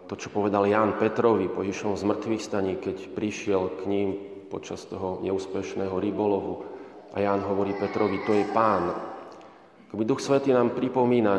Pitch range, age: 95-110 Hz, 30-49